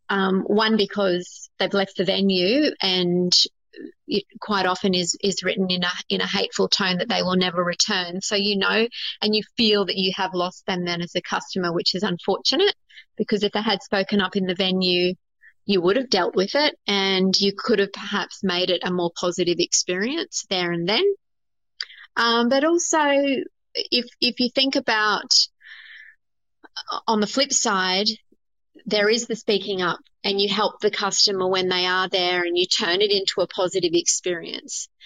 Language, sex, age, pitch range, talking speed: English, female, 30-49, 185-245 Hz, 185 wpm